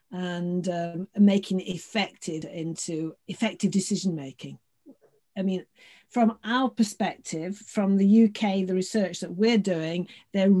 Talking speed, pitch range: 130 wpm, 180-215 Hz